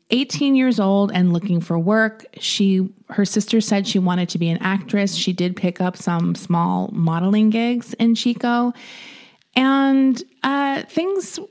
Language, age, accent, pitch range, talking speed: English, 30-49, American, 175-230 Hz, 155 wpm